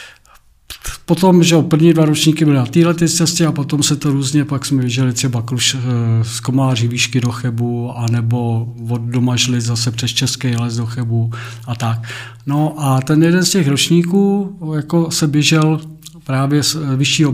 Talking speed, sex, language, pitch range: 160 wpm, male, Czech, 125-155 Hz